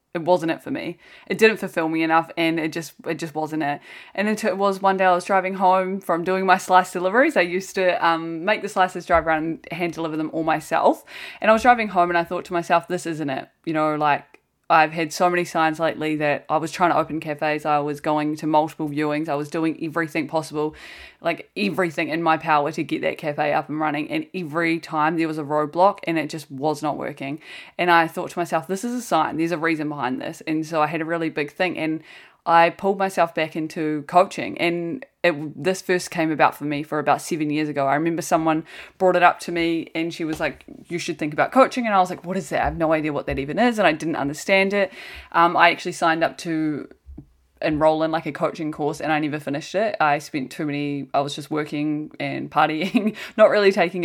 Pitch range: 155-180 Hz